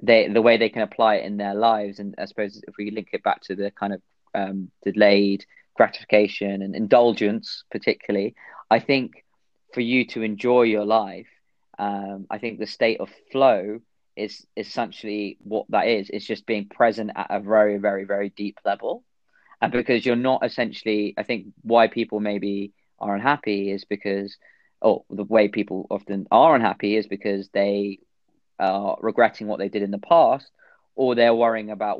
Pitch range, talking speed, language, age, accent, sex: 100-115 Hz, 175 wpm, English, 20-39, British, male